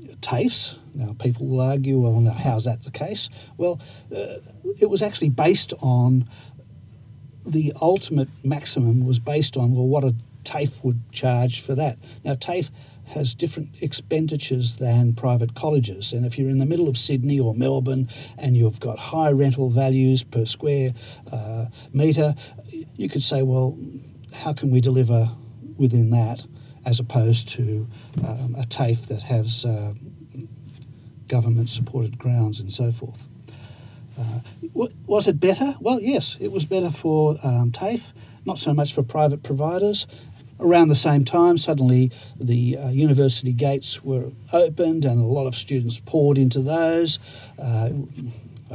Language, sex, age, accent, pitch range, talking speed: English, male, 60-79, Australian, 120-145 Hz, 150 wpm